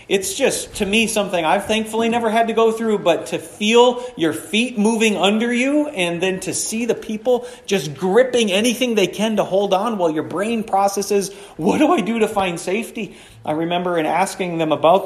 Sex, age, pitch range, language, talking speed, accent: male, 40-59, 155-225 Hz, English, 205 wpm, American